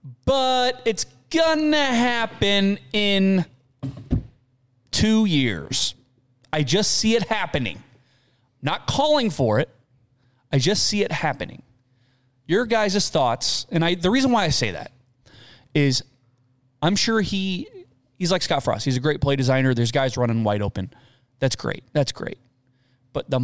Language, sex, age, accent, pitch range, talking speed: English, male, 30-49, American, 125-160 Hz, 145 wpm